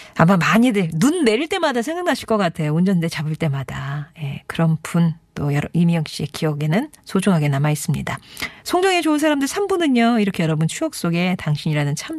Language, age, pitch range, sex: Korean, 40-59, 160-225 Hz, female